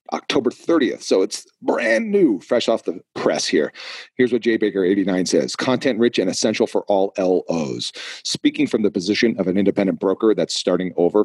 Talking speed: 185 wpm